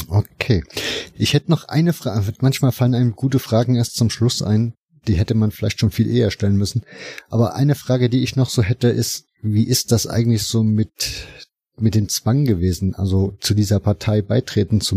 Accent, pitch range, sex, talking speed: German, 100-120 Hz, male, 195 wpm